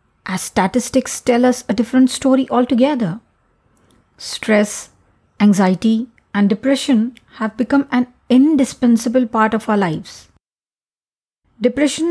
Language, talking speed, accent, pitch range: Hindi, 105 wpm, native, 205-255 Hz